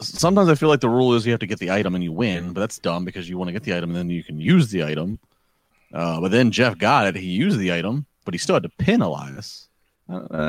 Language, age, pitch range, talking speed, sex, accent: English, 30-49, 110-145 Hz, 290 wpm, male, American